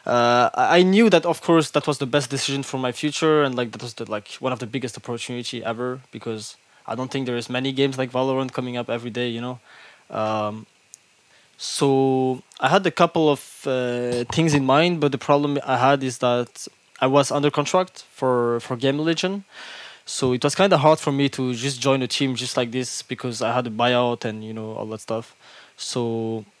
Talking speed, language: 215 wpm, English